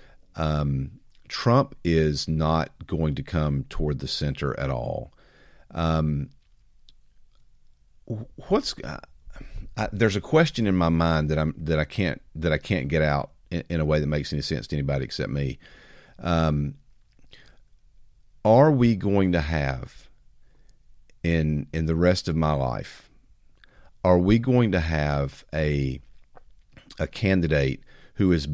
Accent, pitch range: American, 75-95 Hz